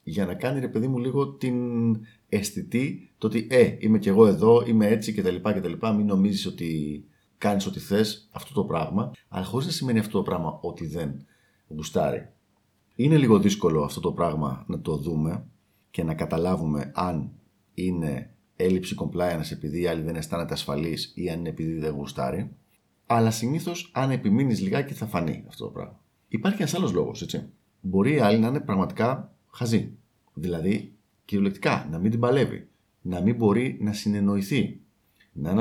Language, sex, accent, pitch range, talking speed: Greek, male, native, 85-120 Hz, 170 wpm